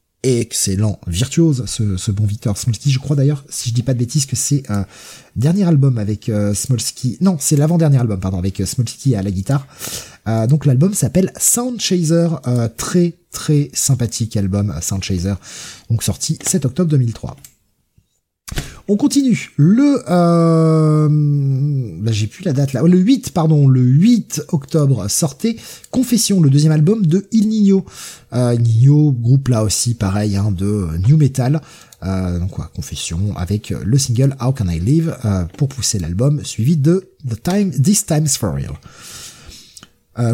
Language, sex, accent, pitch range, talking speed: French, male, French, 105-150 Hz, 165 wpm